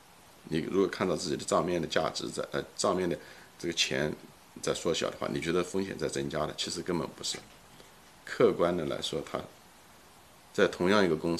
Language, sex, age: Chinese, male, 50-69